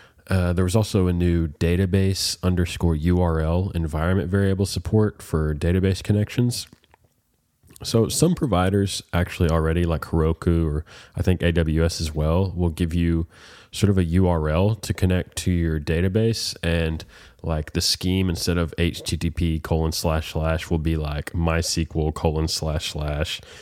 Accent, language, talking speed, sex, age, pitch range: American, English, 145 wpm, male, 20-39, 80-90 Hz